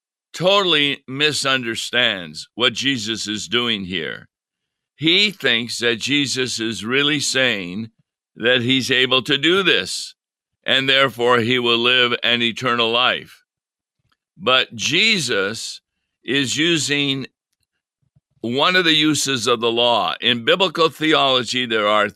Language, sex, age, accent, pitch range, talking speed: English, male, 60-79, American, 115-140 Hz, 120 wpm